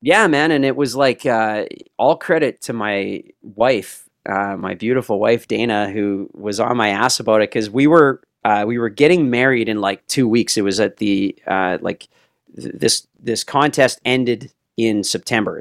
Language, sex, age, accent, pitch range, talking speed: English, male, 30-49, American, 105-130 Hz, 185 wpm